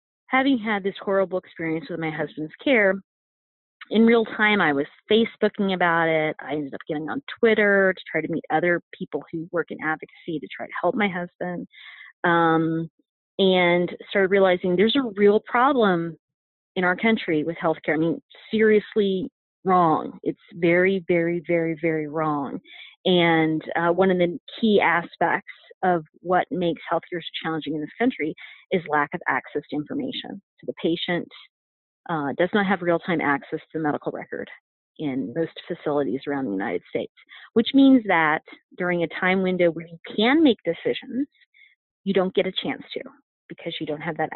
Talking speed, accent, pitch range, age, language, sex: 170 wpm, American, 160-205 Hz, 30-49, English, female